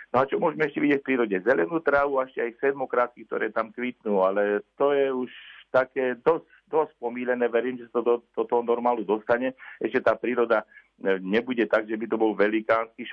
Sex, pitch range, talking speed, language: male, 100-120 Hz, 195 wpm, Slovak